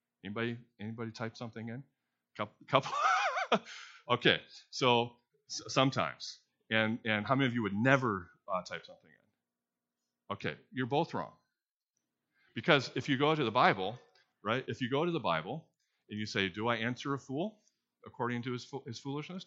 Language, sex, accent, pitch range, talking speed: English, male, American, 105-140 Hz, 165 wpm